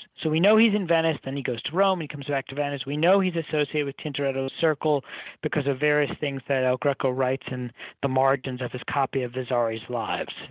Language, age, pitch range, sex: English, 50-69, 135-180 Hz, male